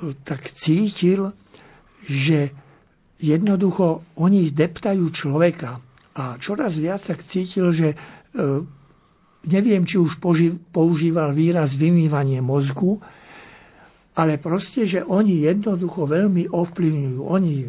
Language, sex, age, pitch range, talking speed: Slovak, male, 60-79, 145-175 Hz, 100 wpm